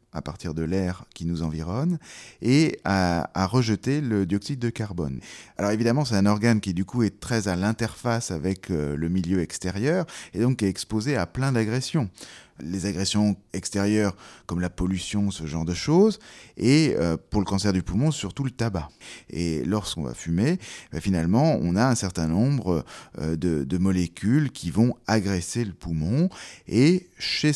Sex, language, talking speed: male, French, 170 wpm